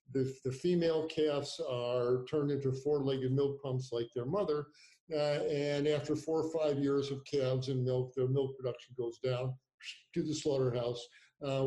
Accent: American